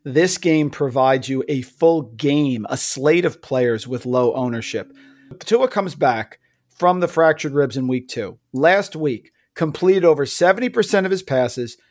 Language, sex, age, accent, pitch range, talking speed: English, male, 40-59, American, 140-180 Hz, 160 wpm